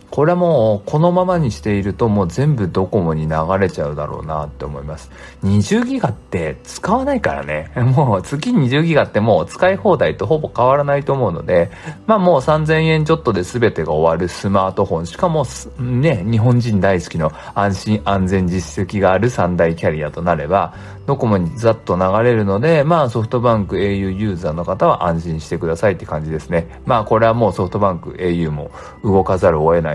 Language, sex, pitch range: Japanese, male, 90-125 Hz